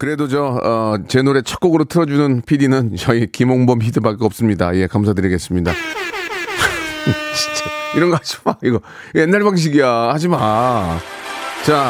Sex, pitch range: male, 110-155 Hz